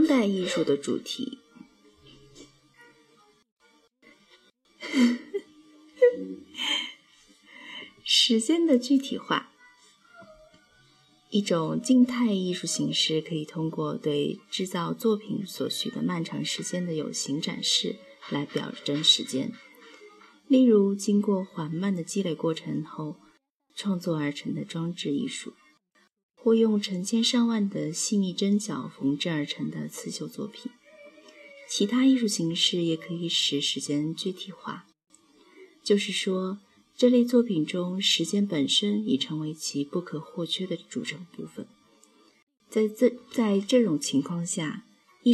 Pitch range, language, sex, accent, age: 160-240 Hz, Chinese, female, native, 30-49